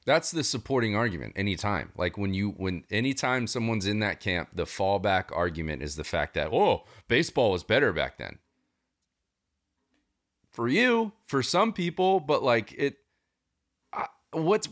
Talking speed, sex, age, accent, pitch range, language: 150 wpm, male, 30-49, American, 90-140 Hz, English